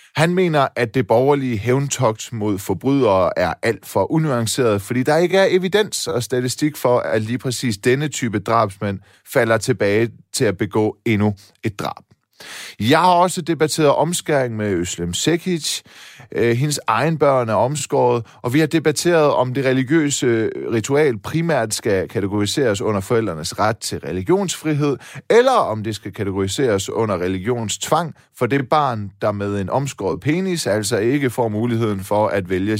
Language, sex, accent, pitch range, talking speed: Danish, male, native, 105-145 Hz, 155 wpm